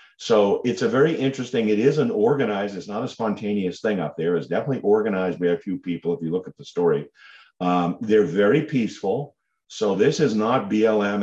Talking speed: 205 wpm